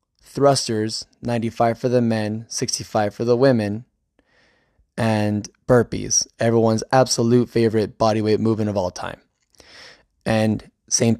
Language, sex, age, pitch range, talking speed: English, male, 10-29, 110-125 Hz, 115 wpm